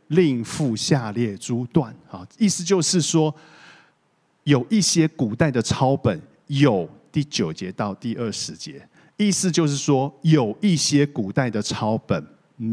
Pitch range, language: 120-175 Hz, Chinese